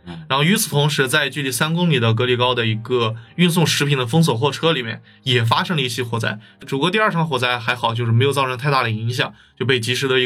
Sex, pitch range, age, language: male, 115-150 Hz, 20-39, Chinese